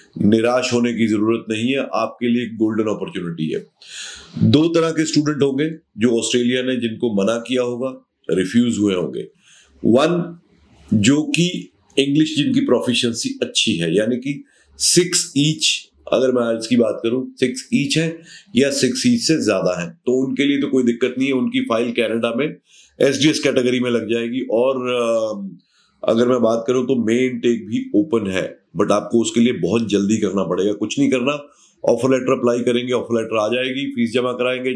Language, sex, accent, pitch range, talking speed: Hindi, male, native, 115-150 Hz, 180 wpm